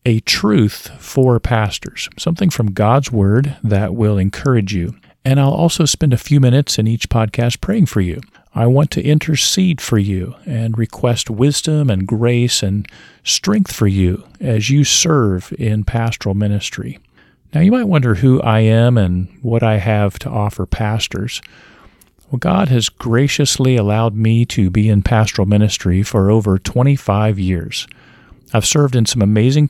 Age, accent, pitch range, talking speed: 40-59, American, 105-125 Hz, 160 wpm